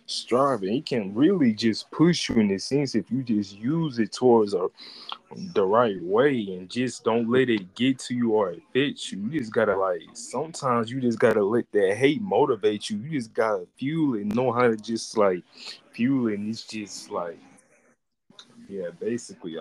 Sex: male